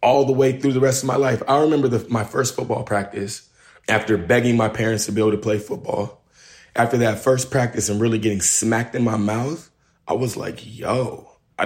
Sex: male